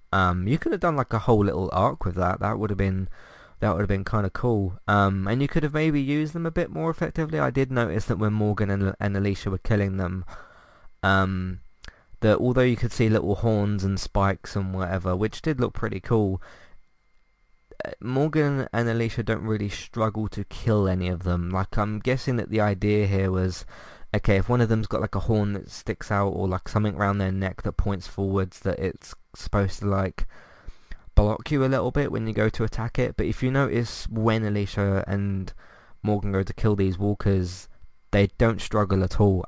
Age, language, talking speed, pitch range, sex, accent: 20-39, English, 210 wpm, 95-115 Hz, male, British